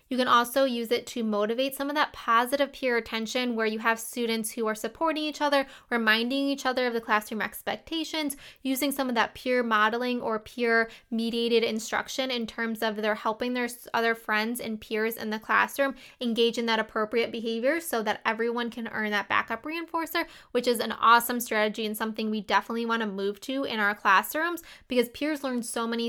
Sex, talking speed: female, 195 wpm